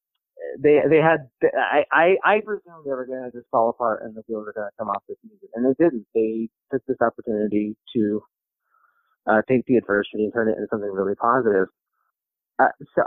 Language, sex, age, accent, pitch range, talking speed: English, male, 30-49, American, 110-160 Hz, 205 wpm